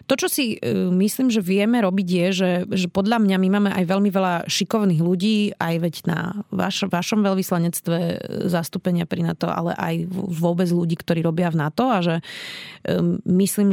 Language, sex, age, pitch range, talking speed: Slovak, female, 30-49, 165-190 Hz, 180 wpm